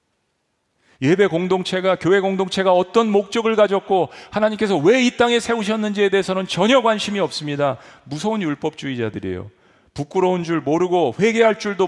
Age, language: 40-59, Korean